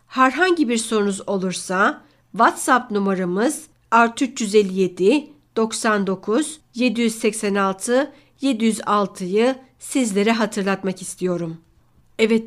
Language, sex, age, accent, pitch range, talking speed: Turkish, female, 60-79, native, 195-245 Hz, 60 wpm